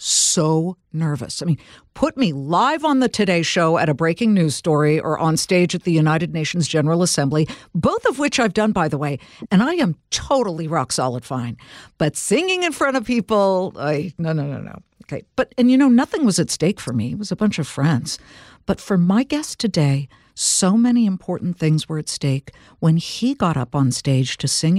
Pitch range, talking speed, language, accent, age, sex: 140-180 Hz, 215 wpm, English, American, 60-79, female